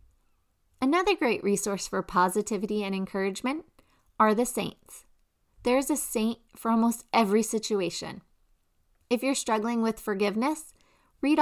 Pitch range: 200-255 Hz